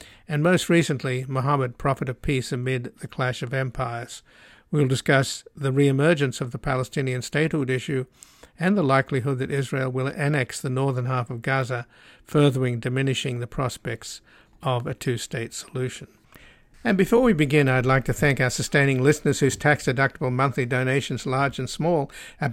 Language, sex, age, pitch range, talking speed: English, male, 60-79, 130-145 Hz, 160 wpm